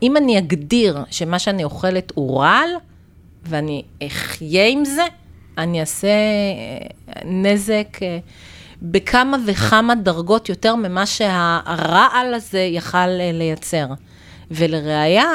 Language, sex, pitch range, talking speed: English, female, 150-205 Hz, 100 wpm